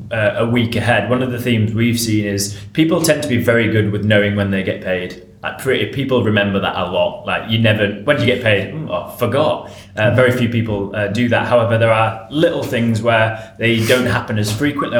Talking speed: 230 wpm